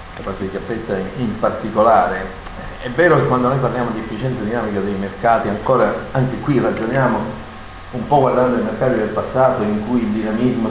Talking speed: 180 wpm